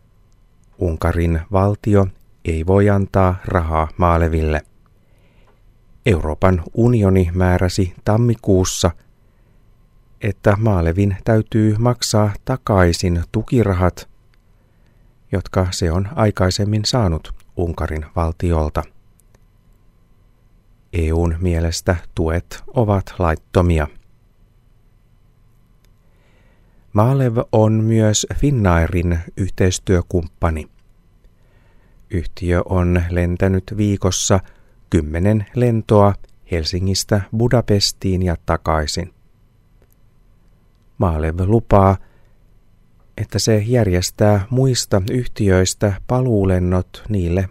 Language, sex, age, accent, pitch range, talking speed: Finnish, male, 30-49, native, 90-110 Hz, 65 wpm